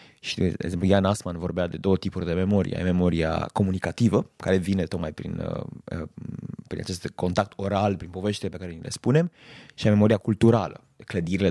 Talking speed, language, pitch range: 160 wpm, Romanian, 95-125 Hz